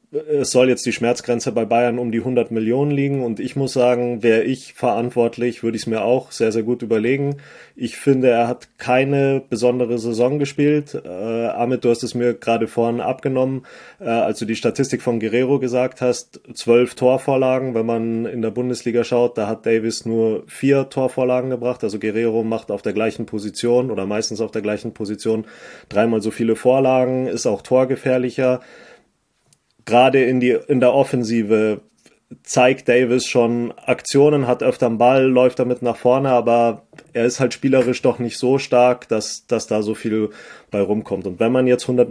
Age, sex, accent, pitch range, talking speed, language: 30-49, male, German, 115-125 Hz, 180 wpm, German